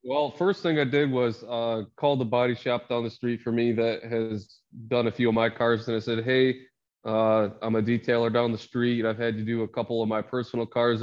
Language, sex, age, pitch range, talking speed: English, male, 20-39, 115-130 Hz, 245 wpm